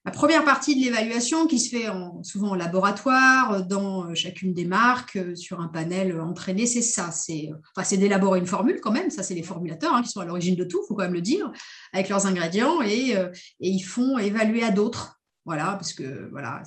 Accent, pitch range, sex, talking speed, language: French, 180-230 Hz, female, 220 wpm, French